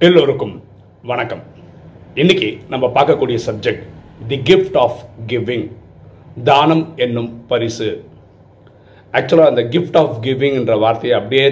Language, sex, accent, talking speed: Tamil, male, native, 110 wpm